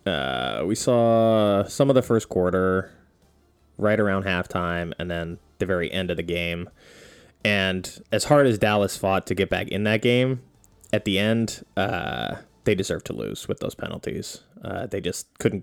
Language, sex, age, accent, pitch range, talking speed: English, male, 20-39, American, 85-105 Hz, 175 wpm